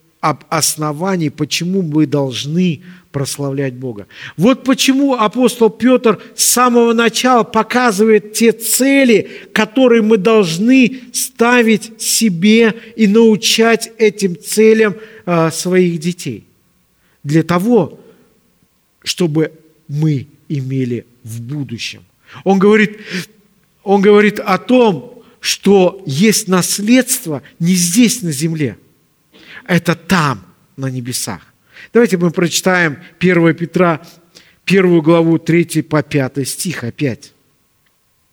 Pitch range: 160-220 Hz